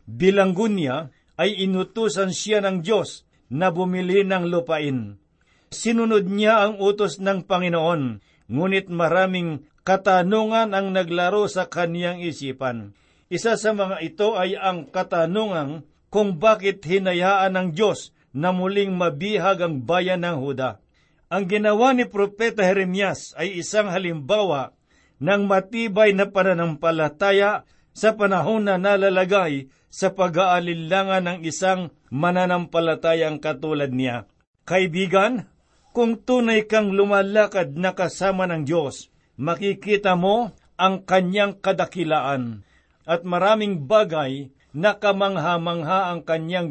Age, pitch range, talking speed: 50-69, 160-200 Hz, 115 wpm